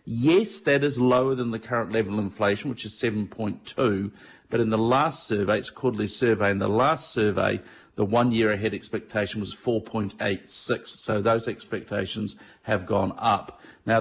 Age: 50-69